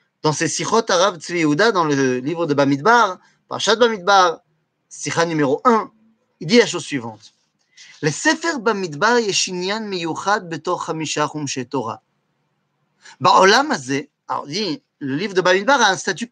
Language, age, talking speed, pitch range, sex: French, 30-49, 145 wpm, 150-225 Hz, male